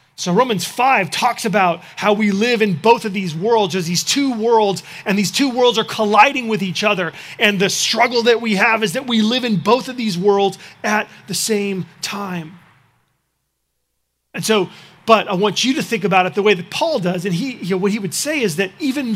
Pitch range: 170-215 Hz